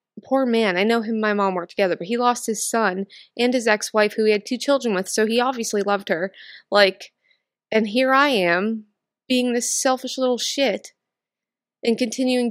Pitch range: 200-235 Hz